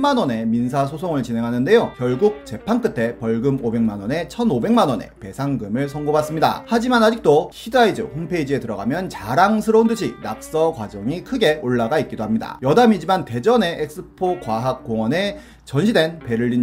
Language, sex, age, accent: Korean, male, 30-49, native